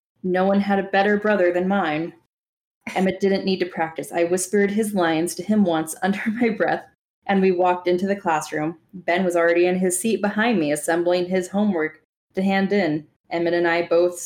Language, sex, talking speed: English, female, 200 wpm